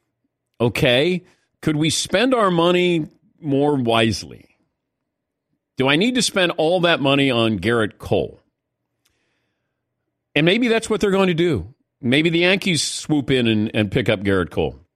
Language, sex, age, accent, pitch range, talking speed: English, male, 50-69, American, 110-155 Hz, 155 wpm